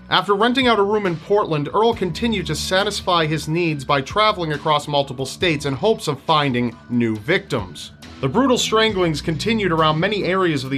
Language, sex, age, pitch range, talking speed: English, male, 40-59, 135-195 Hz, 185 wpm